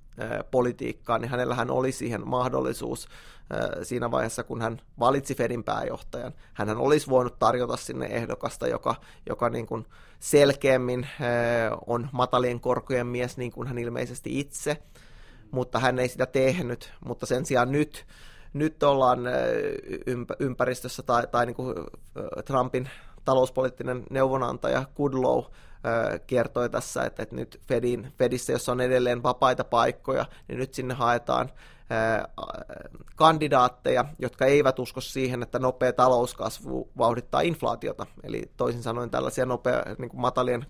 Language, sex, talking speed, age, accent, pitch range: Finnish, male, 120 wpm, 20-39, native, 120-135 Hz